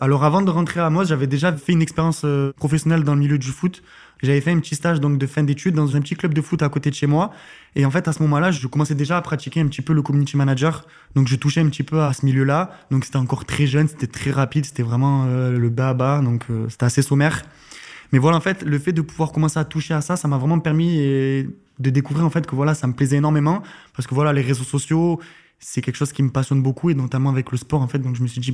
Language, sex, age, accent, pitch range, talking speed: French, male, 20-39, French, 135-160 Hz, 280 wpm